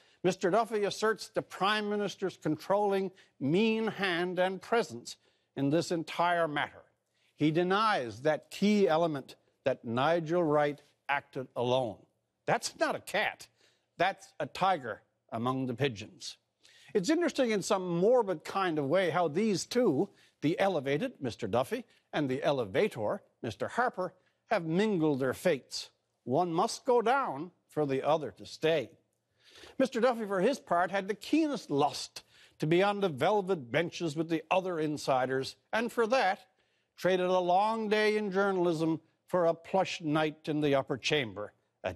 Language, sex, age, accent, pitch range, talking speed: English, male, 60-79, American, 145-210 Hz, 150 wpm